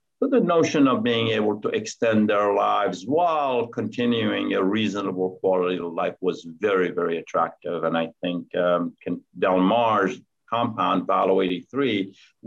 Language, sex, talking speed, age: English, male, 145 wpm, 50-69